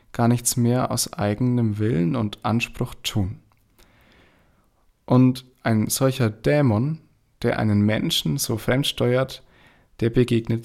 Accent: German